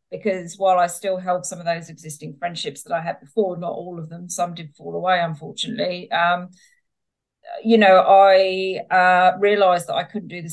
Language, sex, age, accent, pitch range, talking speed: English, female, 40-59, British, 170-215 Hz, 195 wpm